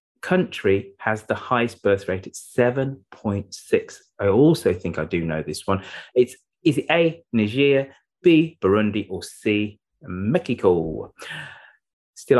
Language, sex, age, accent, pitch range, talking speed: English, male, 30-49, British, 95-135 Hz, 130 wpm